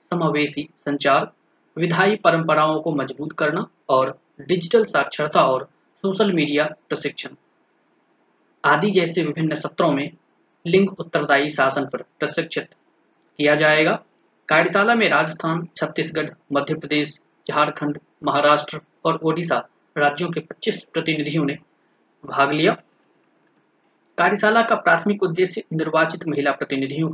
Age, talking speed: 30-49, 105 wpm